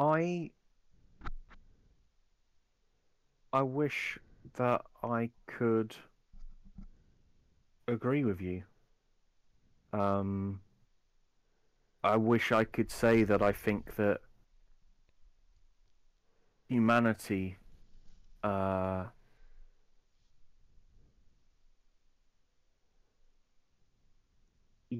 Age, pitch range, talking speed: 40-59, 100-125 Hz, 50 wpm